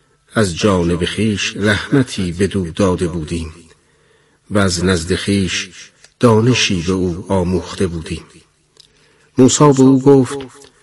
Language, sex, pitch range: Persian, male, 95-120 Hz